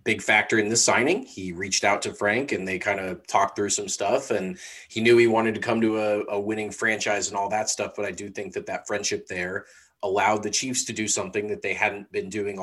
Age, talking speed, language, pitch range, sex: 30-49, 250 wpm, English, 105-130 Hz, male